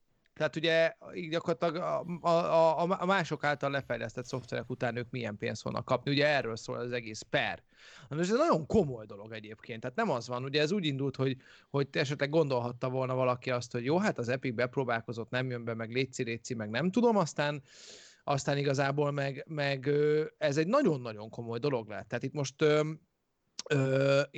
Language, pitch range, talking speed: Hungarian, 120-155 Hz, 180 wpm